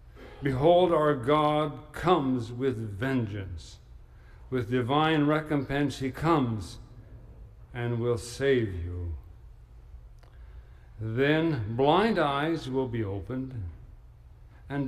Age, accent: 60-79, American